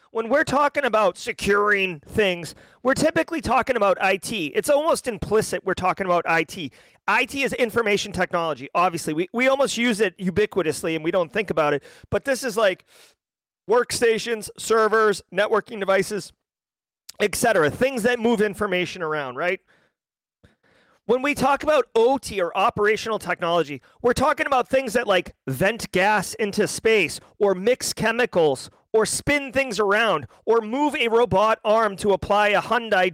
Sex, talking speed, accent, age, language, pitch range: male, 155 wpm, American, 40-59, English, 190-255 Hz